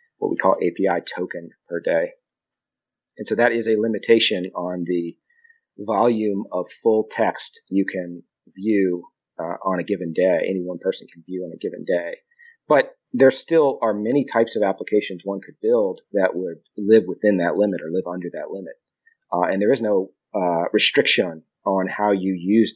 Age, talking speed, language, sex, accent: 40-59, 180 wpm, English, male, American